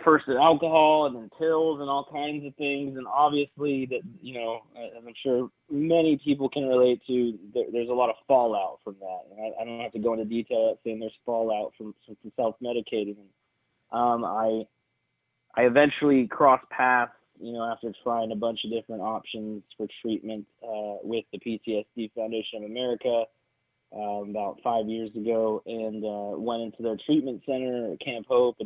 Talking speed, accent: 170 wpm, American